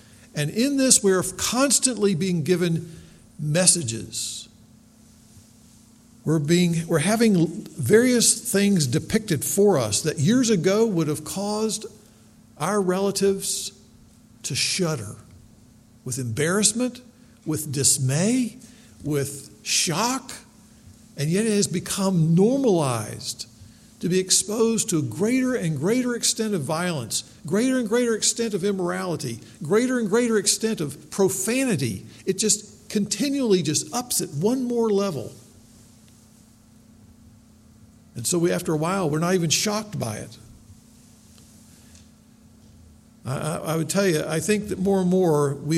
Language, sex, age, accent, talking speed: English, male, 50-69, American, 125 wpm